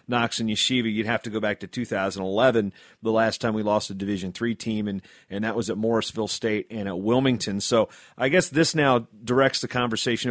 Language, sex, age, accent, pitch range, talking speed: English, male, 30-49, American, 110-130 Hz, 215 wpm